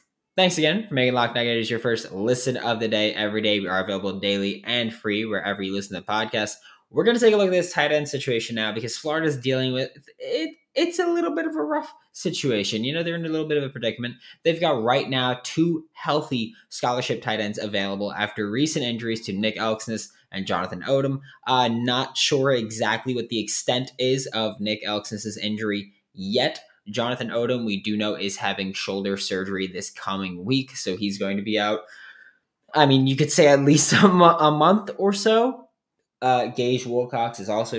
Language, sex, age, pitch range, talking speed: English, male, 20-39, 100-140 Hz, 205 wpm